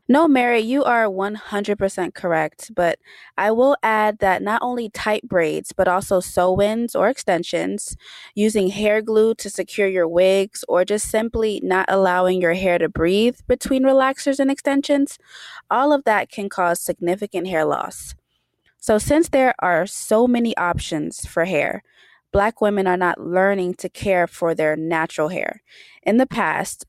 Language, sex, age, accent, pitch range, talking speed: English, female, 20-39, American, 180-235 Hz, 160 wpm